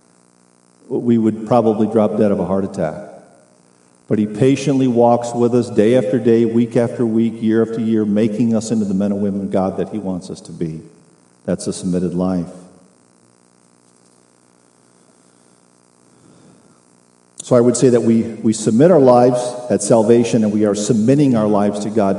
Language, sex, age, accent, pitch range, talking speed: English, male, 50-69, American, 90-125 Hz, 170 wpm